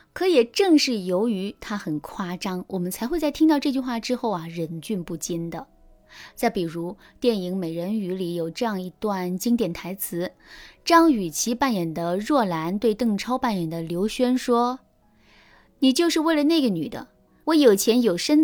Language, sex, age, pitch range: Chinese, female, 20-39, 185-285 Hz